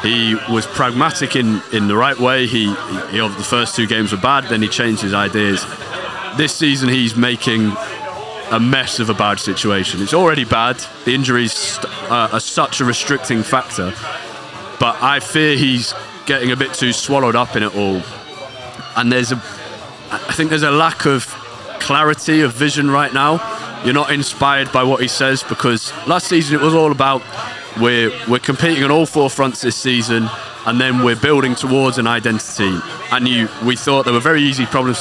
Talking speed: 190 wpm